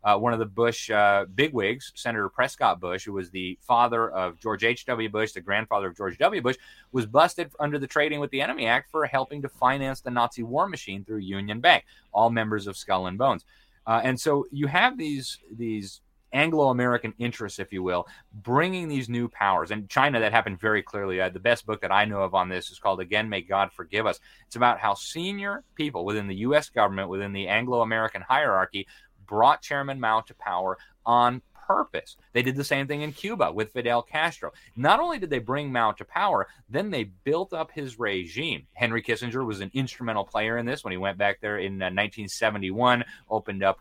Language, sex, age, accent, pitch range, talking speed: English, male, 30-49, American, 100-135 Hz, 205 wpm